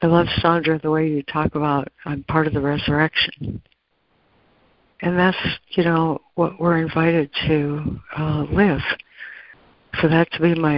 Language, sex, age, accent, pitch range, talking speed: English, female, 60-79, American, 145-170 Hz, 155 wpm